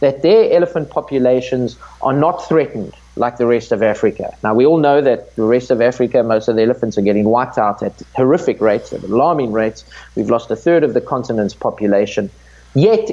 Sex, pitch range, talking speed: male, 120-160 Hz, 200 wpm